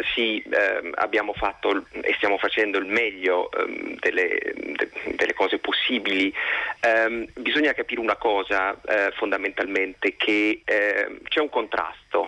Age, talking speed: 30-49, 135 wpm